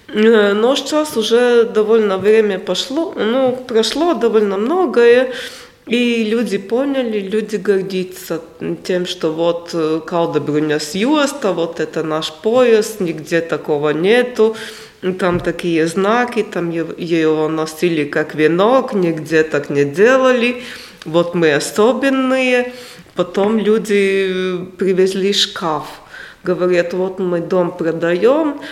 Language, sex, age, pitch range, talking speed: Russian, female, 20-39, 170-225 Hz, 110 wpm